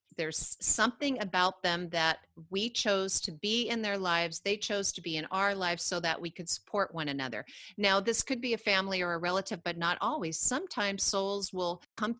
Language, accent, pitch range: English, American, 160-200 Hz